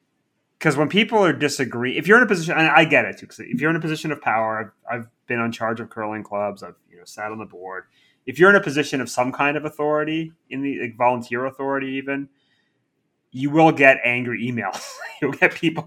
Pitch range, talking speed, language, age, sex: 115-150 Hz, 235 wpm, English, 30-49, male